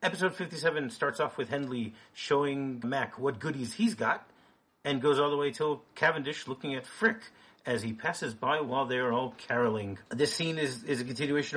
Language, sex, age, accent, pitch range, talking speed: English, male, 40-59, American, 120-150 Hz, 190 wpm